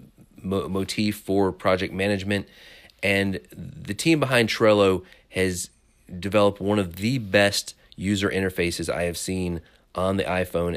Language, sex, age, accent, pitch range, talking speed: English, male, 30-49, American, 90-105 Hz, 130 wpm